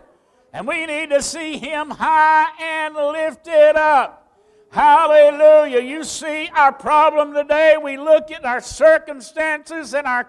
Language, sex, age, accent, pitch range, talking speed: English, male, 60-79, American, 275-325 Hz, 135 wpm